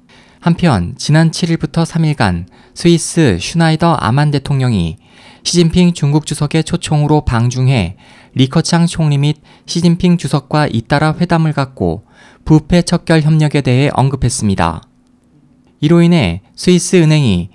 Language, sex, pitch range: Korean, male, 125-165 Hz